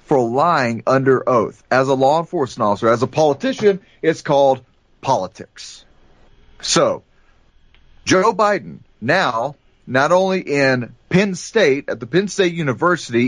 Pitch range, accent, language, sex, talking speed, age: 130-180 Hz, American, English, male, 130 wpm, 40-59